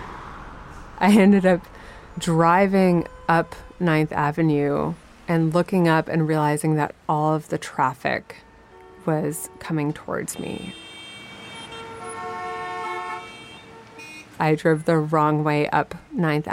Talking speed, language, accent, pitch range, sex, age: 100 wpm, English, American, 155-175 Hz, female, 30-49